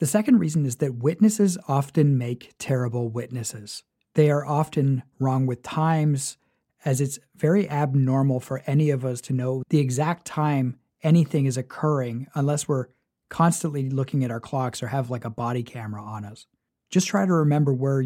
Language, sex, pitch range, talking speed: English, male, 130-155 Hz, 175 wpm